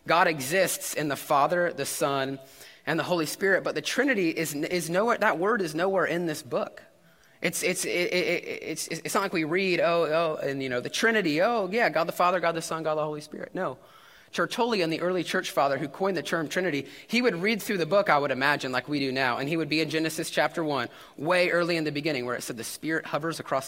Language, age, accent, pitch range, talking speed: English, 20-39, American, 135-175 Hz, 240 wpm